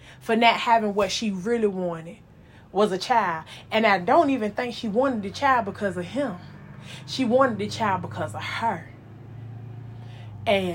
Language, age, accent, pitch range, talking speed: English, 20-39, American, 180-260 Hz, 165 wpm